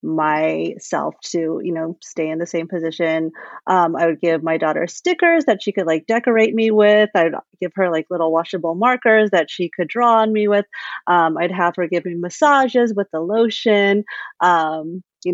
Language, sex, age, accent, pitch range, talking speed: English, female, 30-49, American, 175-215 Hz, 190 wpm